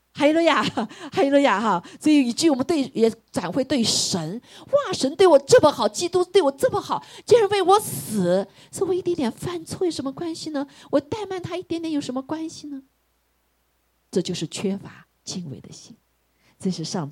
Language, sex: Chinese, female